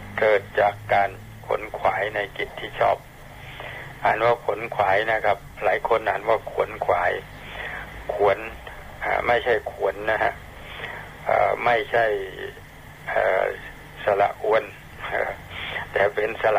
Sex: male